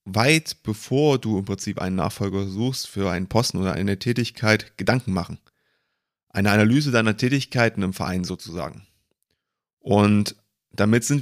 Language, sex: German, male